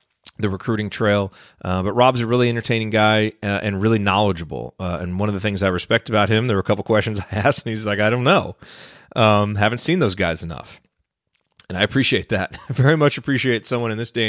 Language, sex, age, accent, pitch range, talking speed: English, male, 30-49, American, 95-120 Hz, 230 wpm